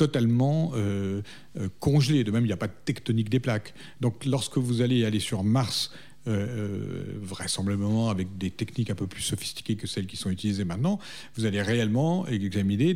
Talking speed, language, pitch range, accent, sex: 185 wpm, French, 100-140 Hz, French, male